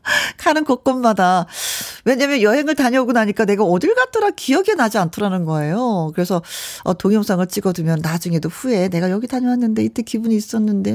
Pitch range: 185-260 Hz